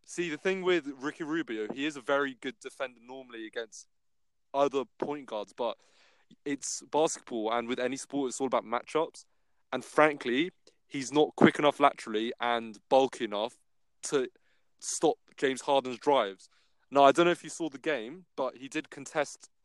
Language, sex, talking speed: English, male, 170 wpm